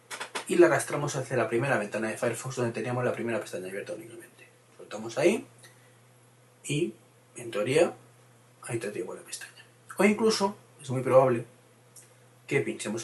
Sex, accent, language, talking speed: male, Spanish, Spanish, 150 wpm